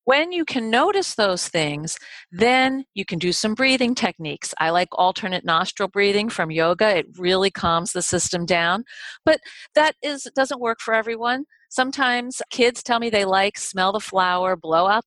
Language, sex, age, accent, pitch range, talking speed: English, female, 40-59, American, 180-255 Hz, 170 wpm